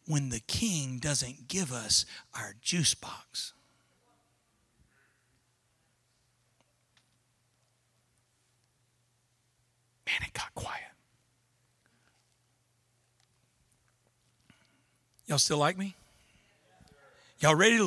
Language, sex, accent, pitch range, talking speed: English, male, American, 120-200 Hz, 65 wpm